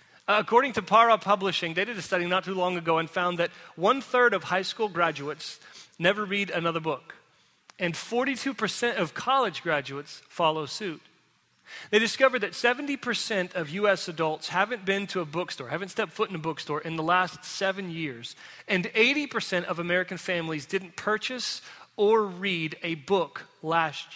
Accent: American